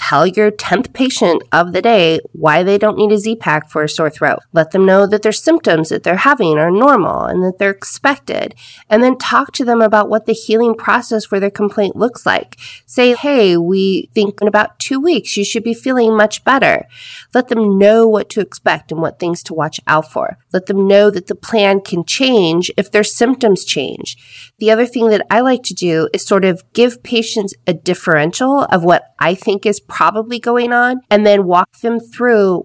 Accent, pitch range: American, 165-220 Hz